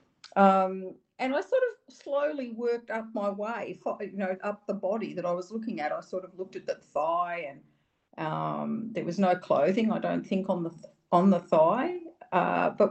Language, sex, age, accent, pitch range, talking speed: English, female, 50-69, Australian, 175-225 Hz, 205 wpm